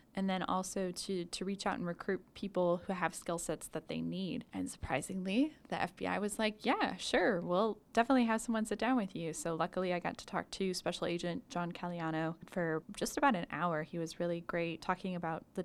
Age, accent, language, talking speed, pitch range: 10-29, American, English, 215 wpm, 170-200 Hz